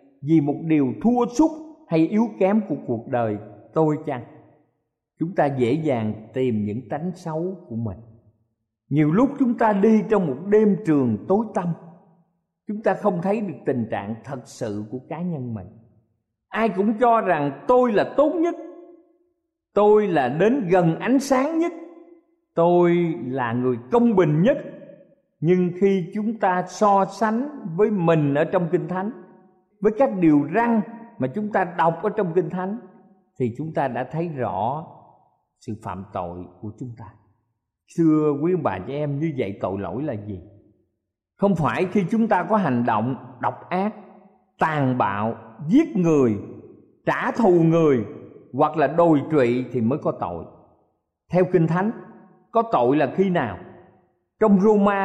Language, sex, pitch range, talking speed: Vietnamese, male, 125-205 Hz, 165 wpm